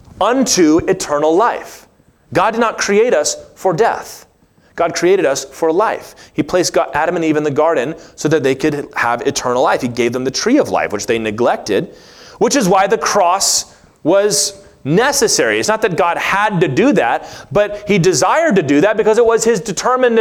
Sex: male